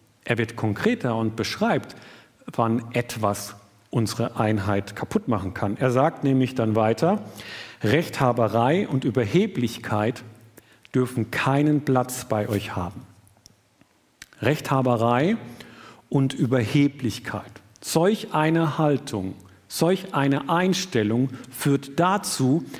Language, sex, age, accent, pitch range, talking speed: German, male, 50-69, German, 110-155 Hz, 95 wpm